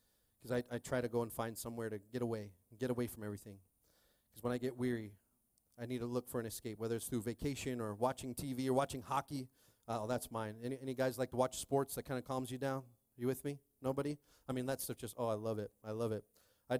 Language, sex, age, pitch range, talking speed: English, male, 30-49, 115-145 Hz, 255 wpm